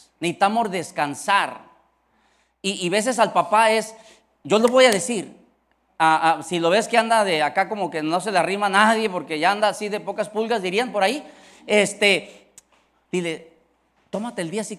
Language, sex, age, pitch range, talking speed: Spanish, male, 40-59, 165-225 Hz, 185 wpm